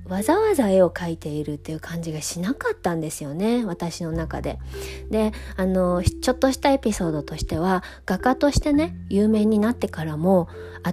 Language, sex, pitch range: Japanese, female, 160-220 Hz